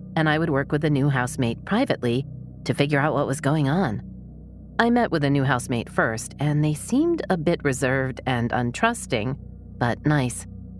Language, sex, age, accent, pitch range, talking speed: English, female, 40-59, American, 125-165 Hz, 185 wpm